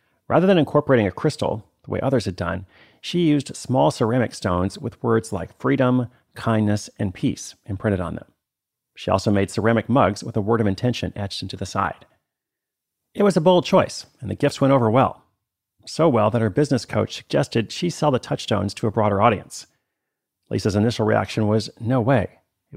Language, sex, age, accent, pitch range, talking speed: English, male, 40-59, American, 105-130 Hz, 190 wpm